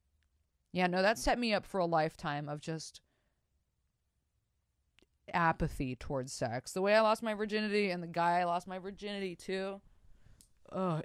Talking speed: 160 wpm